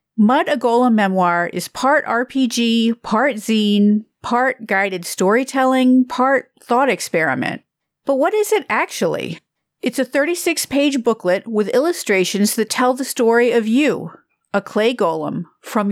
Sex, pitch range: female, 190-250 Hz